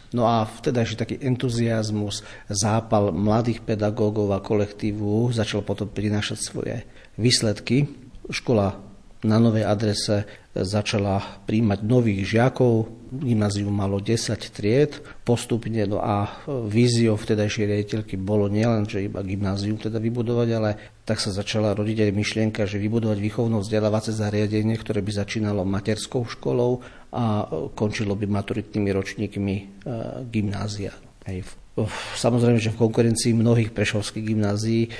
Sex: male